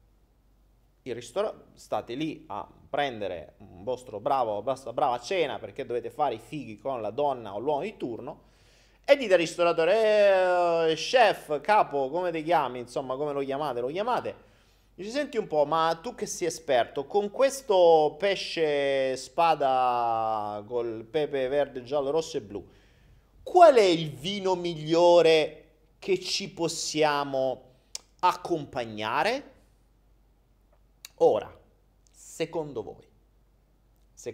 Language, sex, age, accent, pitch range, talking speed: Italian, male, 30-49, native, 135-205 Hz, 125 wpm